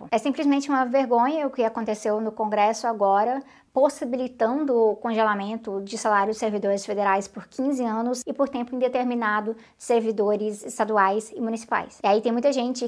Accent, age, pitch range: Brazilian, 20-39, 220-270 Hz